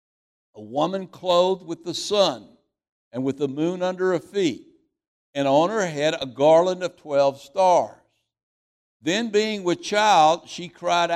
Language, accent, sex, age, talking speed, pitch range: English, American, male, 60-79, 150 wpm, 135-180 Hz